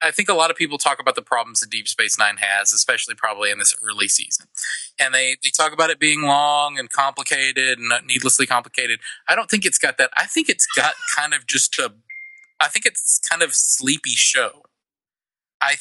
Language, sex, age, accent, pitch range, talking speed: English, male, 30-49, American, 130-170 Hz, 215 wpm